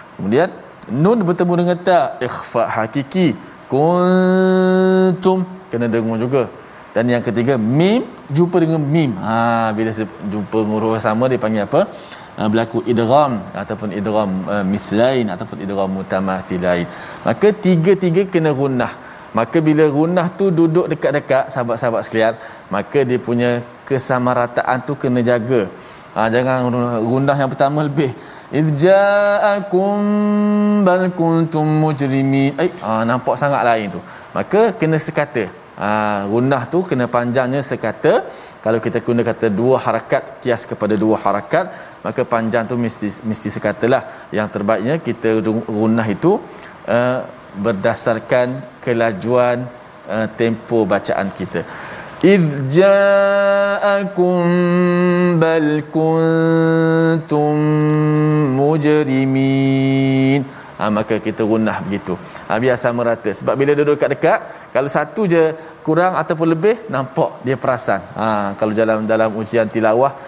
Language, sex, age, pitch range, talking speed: Malayalam, male, 20-39, 115-165 Hz, 110 wpm